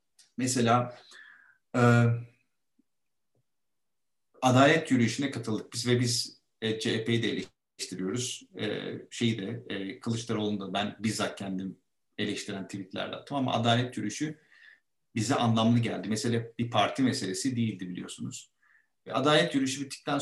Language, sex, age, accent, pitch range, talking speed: Turkish, male, 50-69, native, 110-130 Hz, 115 wpm